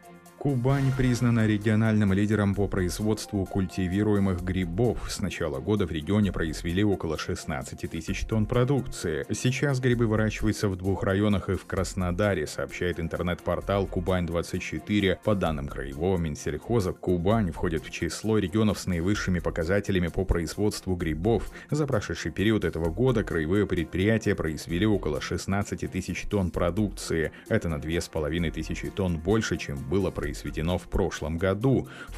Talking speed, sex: 130 wpm, male